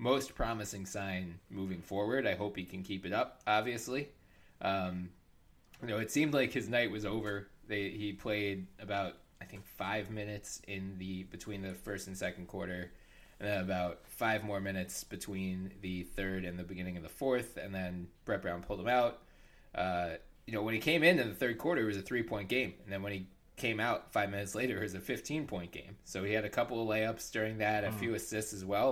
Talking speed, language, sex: 215 wpm, English, male